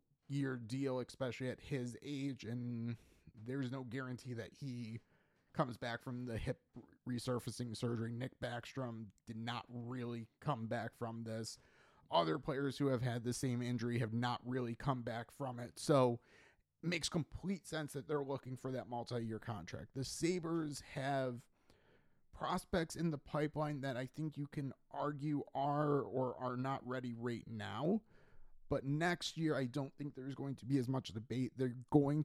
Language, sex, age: English, male, 30-49